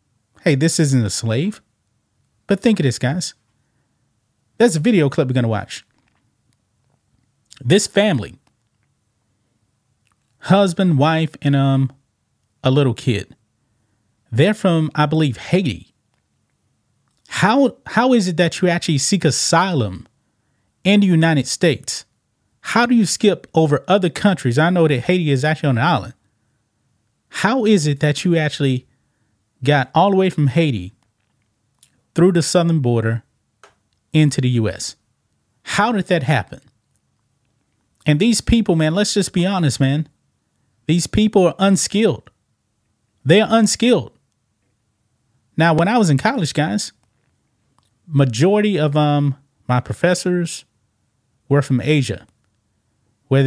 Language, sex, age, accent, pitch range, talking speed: English, male, 30-49, American, 115-175 Hz, 130 wpm